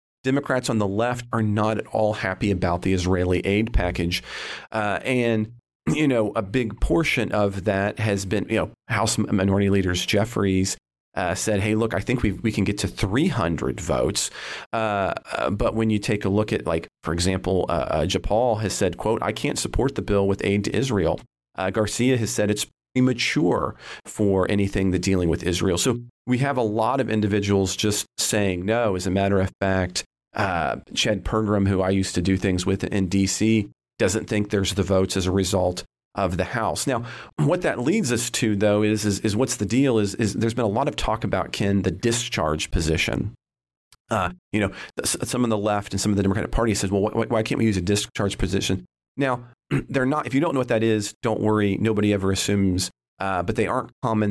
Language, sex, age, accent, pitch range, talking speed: English, male, 40-59, American, 95-110 Hz, 210 wpm